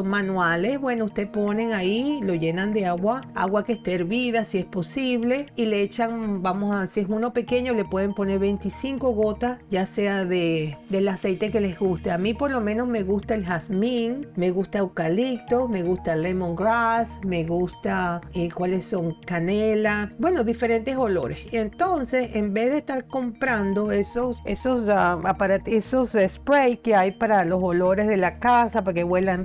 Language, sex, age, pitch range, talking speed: Spanish, female, 40-59, 190-235 Hz, 175 wpm